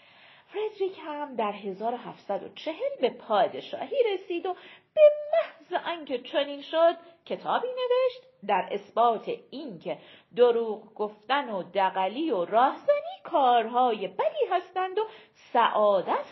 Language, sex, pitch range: Persian, female, 220-325 Hz